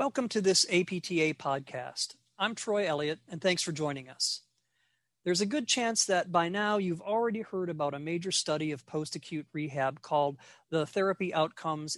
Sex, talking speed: male, 170 wpm